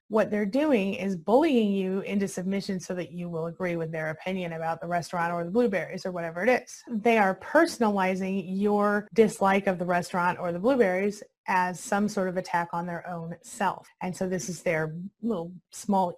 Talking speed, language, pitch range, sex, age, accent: 195 wpm, English, 175-225 Hz, female, 20-39, American